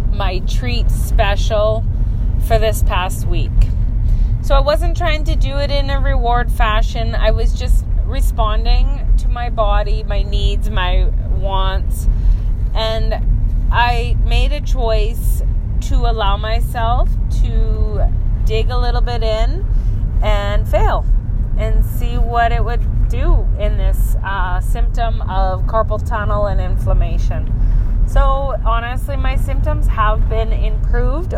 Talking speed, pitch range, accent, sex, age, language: 130 wpm, 95-110 Hz, American, female, 30-49, English